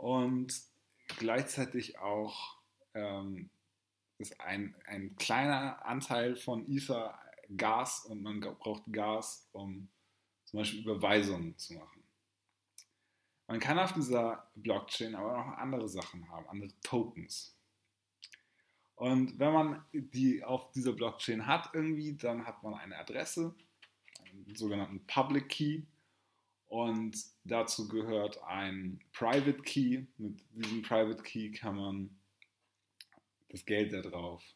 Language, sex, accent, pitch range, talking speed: German, male, German, 100-130 Hz, 120 wpm